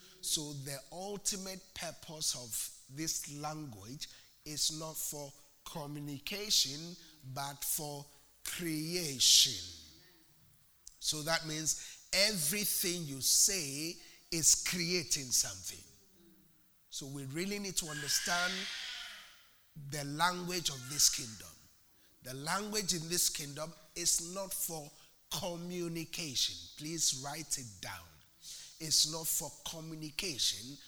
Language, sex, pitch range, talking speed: English, male, 140-170 Hz, 100 wpm